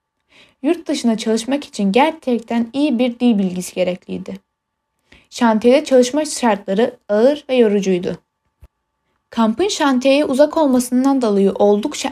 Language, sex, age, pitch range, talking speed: Turkish, female, 10-29, 210-275 Hz, 110 wpm